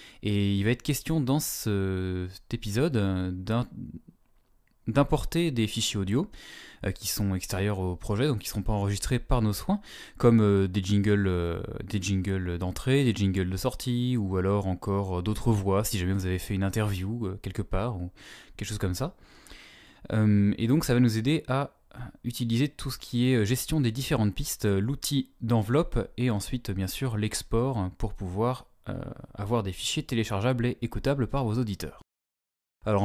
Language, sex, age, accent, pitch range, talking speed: French, male, 20-39, French, 95-125 Hz, 170 wpm